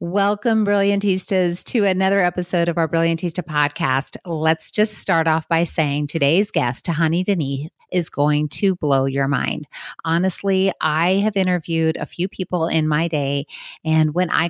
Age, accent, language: 30-49, American, English